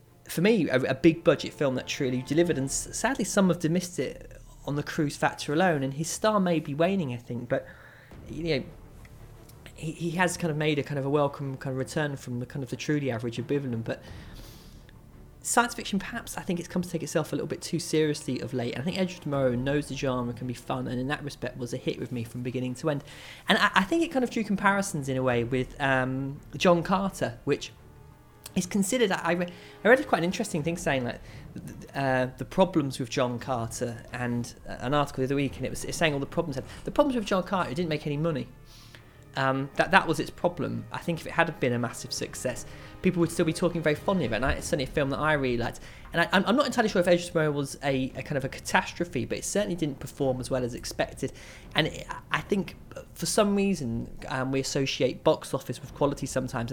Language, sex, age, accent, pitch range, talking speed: English, male, 20-39, British, 130-170 Hz, 240 wpm